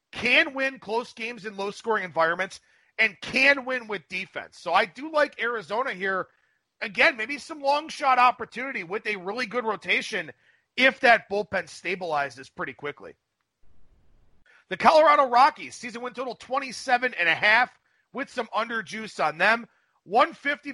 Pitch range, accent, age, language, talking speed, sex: 195-260 Hz, American, 30-49, English, 155 wpm, male